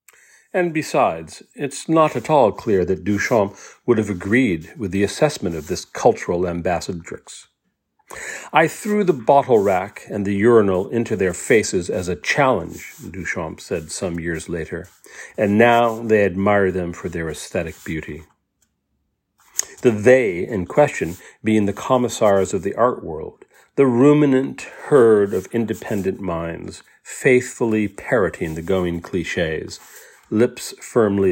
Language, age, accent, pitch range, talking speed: English, 40-59, American, 95-130 Hz, 135 wpm